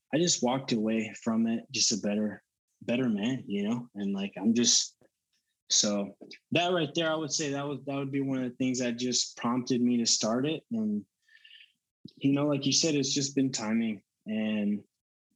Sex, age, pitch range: male, 20-39, 110-130 Hz